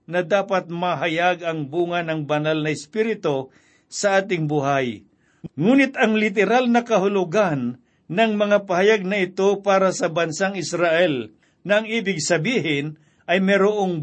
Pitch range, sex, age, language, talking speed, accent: 165-195 Hz, male, 50-69, Filipino, 135 wpm, native